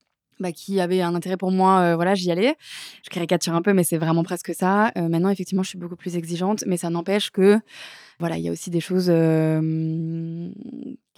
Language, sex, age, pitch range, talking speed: French, female, 20-39, 170-190 Hz, 215 wpm